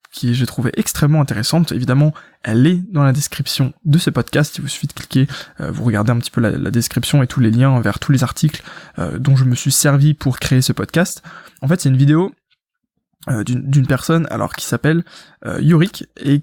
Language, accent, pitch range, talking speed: French, French, 135-175 Hz, 215 wpm